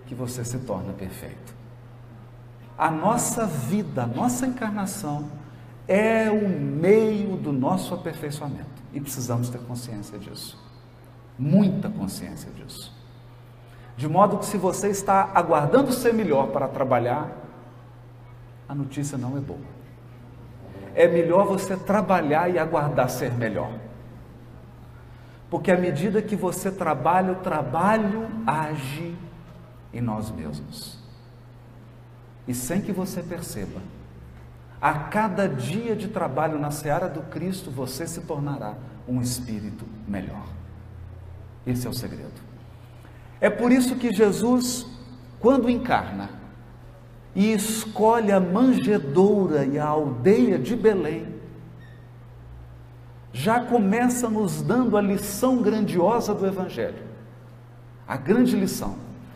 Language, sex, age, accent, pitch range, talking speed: Portuguese, male, 50-69, Brazilian, 120-195 Hz, 115 wpm